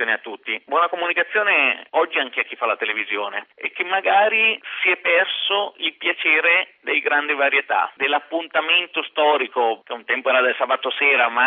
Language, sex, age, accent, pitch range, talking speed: Italian, male, 40-59, native, 130-170 Hz, 165 wpm